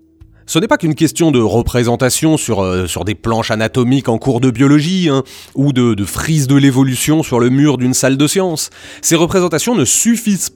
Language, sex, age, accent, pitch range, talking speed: French, male, 30-49, French, 110-165 Hz, 200 wpm